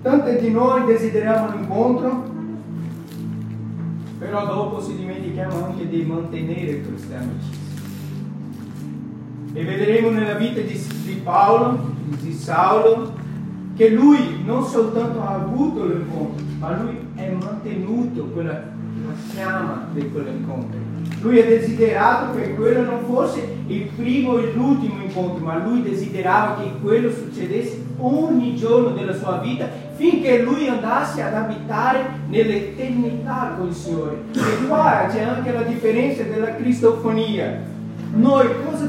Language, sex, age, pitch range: Italian, male, 40-59, 185-250 Hz